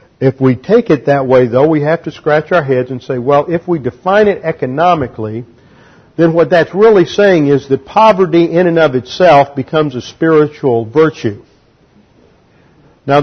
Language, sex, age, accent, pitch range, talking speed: English, male, 50-69, American, 120-145 Hz, 170 wpm